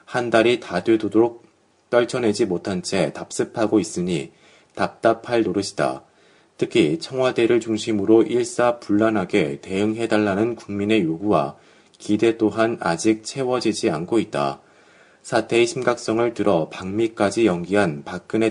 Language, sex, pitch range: Korean, male, 100-120 Hz